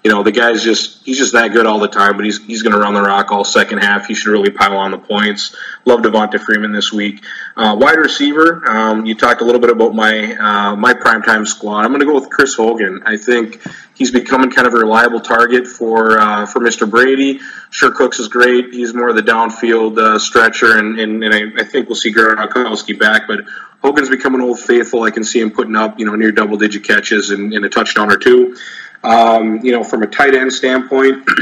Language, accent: English, American